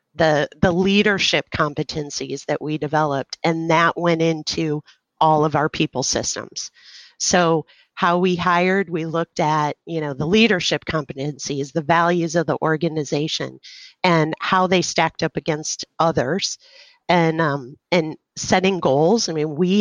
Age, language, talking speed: 40-59, English, 145 wpm